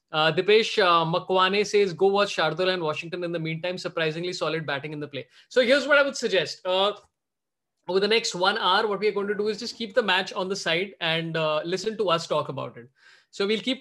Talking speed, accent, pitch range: 245 wpm, Indian, 175-265 Hz